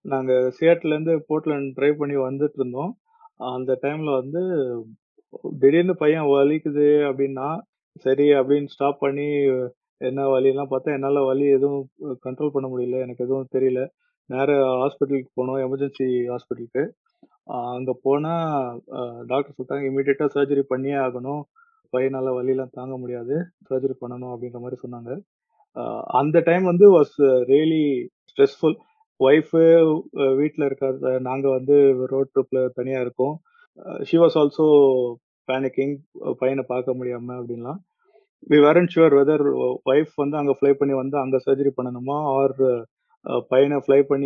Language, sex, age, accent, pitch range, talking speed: Tamil, male, 30-49, native, 130-145 Hz, 125 wpm